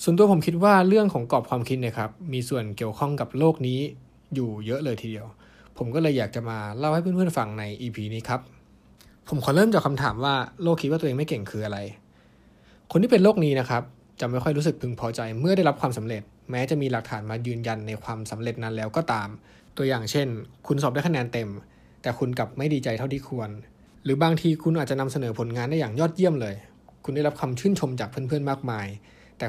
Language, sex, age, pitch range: Thai, male, 20-39, 110-150 Hz